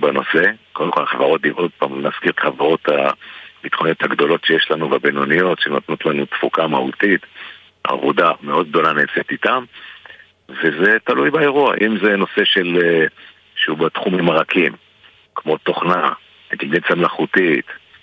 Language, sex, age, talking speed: Hebrew, male, 50-69, 125 wpm